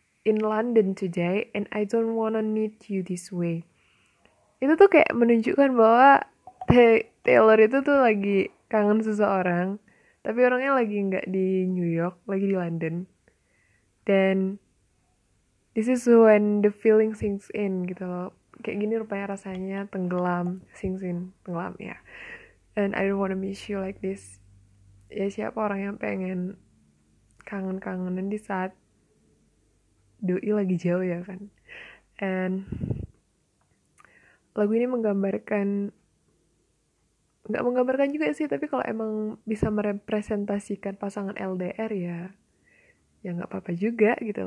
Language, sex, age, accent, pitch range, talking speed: Indonesian, female, 10-29, native, 175-215 Hz, 130 wpm